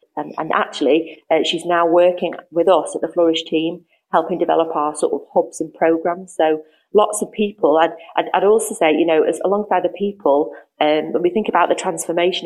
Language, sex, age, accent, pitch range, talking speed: English, female, 30-49, British, 160-180 Hz, 210 wpm